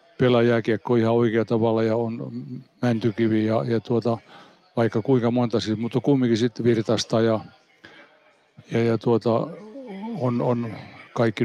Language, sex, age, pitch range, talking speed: Finnish, male, 60-79, 115-130 Hz, 135 wpm